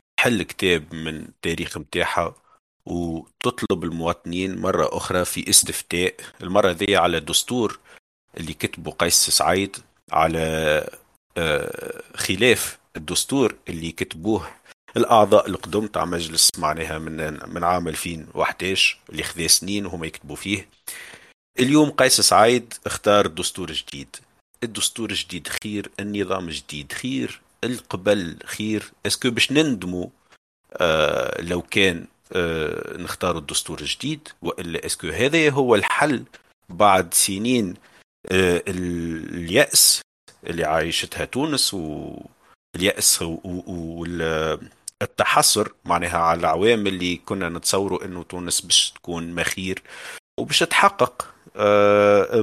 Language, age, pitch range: Arabic, 50-69, 85-105 Hz